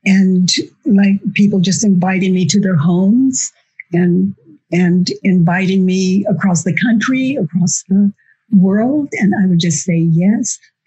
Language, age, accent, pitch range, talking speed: English, 50-69, American, 175-205 Hz, 140 wpm